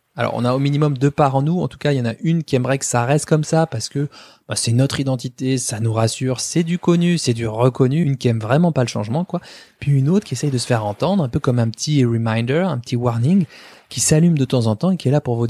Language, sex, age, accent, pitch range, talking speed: French, male, 20-39, French, 120-160 Hz, 300 wpm